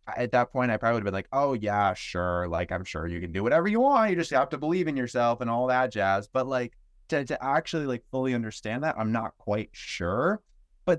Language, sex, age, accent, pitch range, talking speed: English, male, 20-39, American, 100-130 Hz, 245 wpm